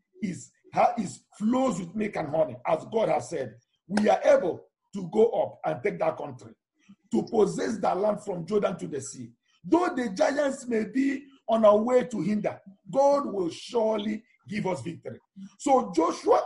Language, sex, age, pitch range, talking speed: English, male, 50-69, 200-280 Hz, 175 wpm